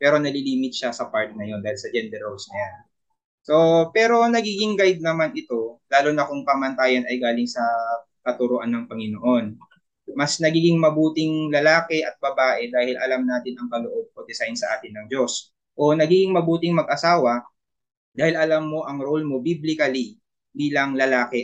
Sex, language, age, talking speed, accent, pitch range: male, Filipino, 20-39, 160 wpm, native, 120-155 Hz